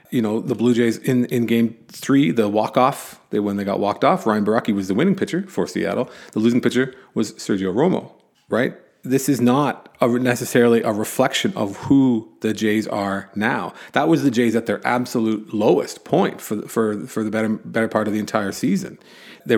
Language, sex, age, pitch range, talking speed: English, male, 30-49, 105-125 Hz, 200 wpm